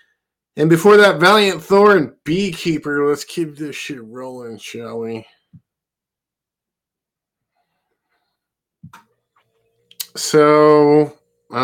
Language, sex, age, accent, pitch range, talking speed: English, male, 20-39, American, 105-150 Hz, 80 wpm